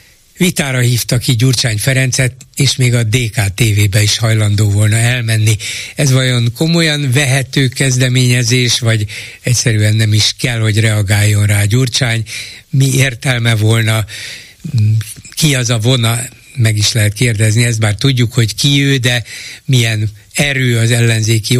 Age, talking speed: 60-79, 135 wpm